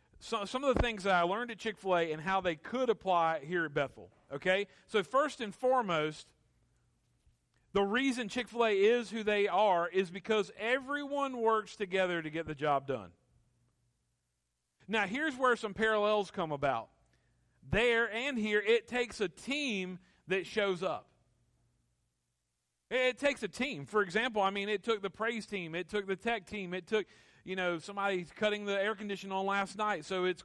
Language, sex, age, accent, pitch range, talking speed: English, male, 40-59, American, 165-220 Hz, 175 wpm